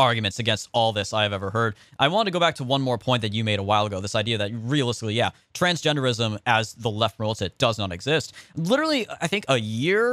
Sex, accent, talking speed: male, American, 250 wpm